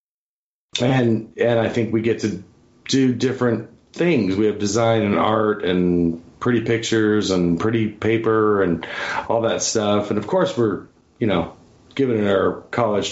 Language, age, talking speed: English, 30-49, 160 wpm